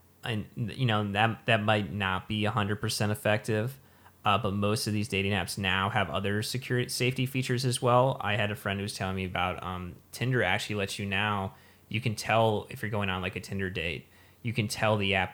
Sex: male